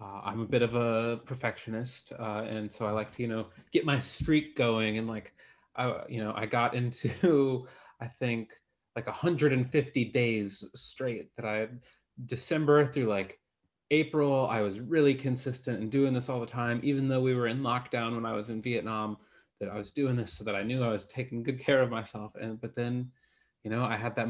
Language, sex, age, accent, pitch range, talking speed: English, male, 30-49, American, 110-140 Hz, 205 wpm